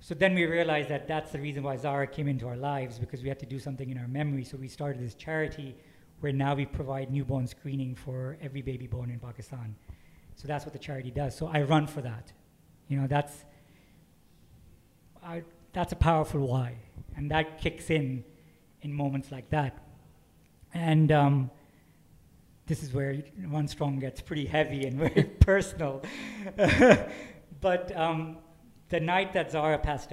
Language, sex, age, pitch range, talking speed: English, male, 50-69, 130-155 Hz, 175 wpm